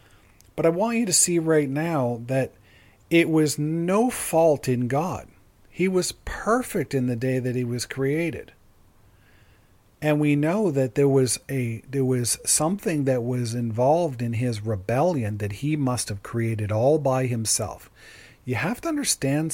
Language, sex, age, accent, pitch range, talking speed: English, male, 50-69, American, 110-150 Hz, 165 wpm